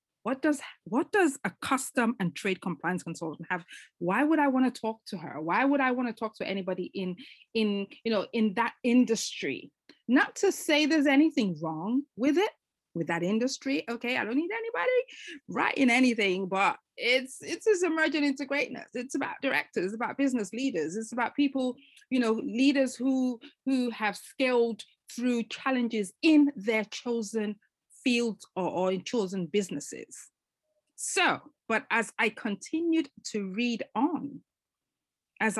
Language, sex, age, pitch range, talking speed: English, female, 30-49, 200-280 Hz, 160 wpm